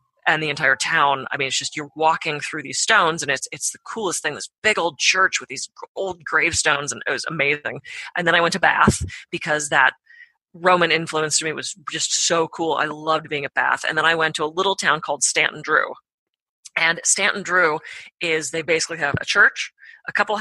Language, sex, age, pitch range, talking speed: English, female, 30-49, 150-185 Hz, 220 wpm